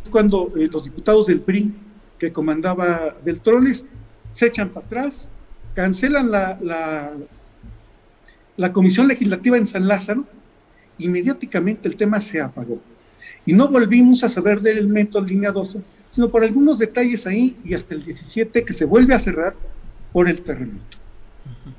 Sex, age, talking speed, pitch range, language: male, 50-69, 150 wpm, 155-215 Hz, Spanish